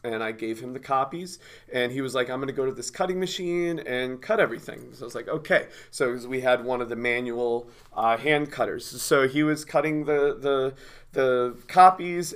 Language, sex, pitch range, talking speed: English, male, 120-175 Hz, 215 wpm